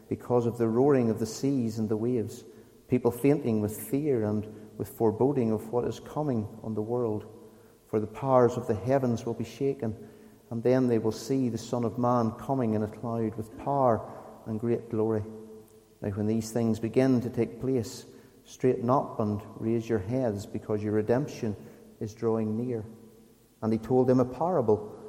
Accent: British